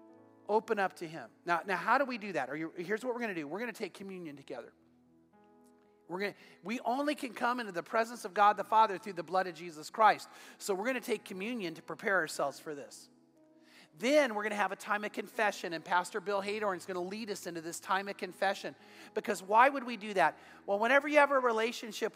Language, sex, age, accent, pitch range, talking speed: English, male, 40-59, American, 180-230 Hz, 245 wpm